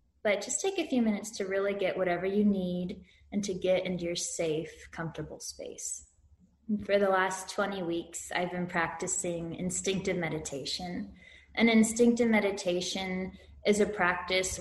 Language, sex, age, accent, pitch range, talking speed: English, female, 20-39, American, 175-205 Hz, 150 wpm